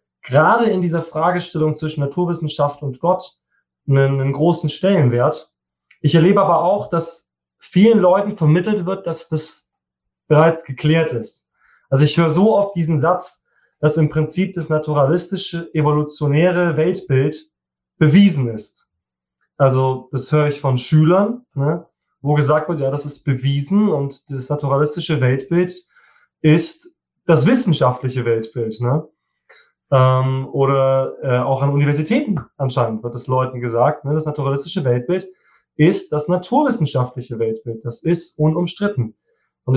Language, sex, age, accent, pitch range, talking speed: German, male, 20-39, German, 135-175 Hz, 130 wpm